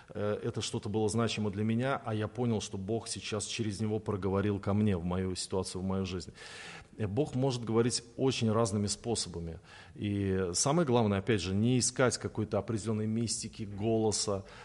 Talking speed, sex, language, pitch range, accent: 165 wpm, male, Russian, 105-125 Hz, native